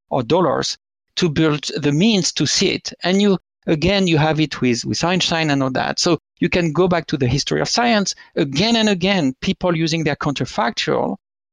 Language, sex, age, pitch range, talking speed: English, male, 50-69, 145-195 Hz, 200 wpm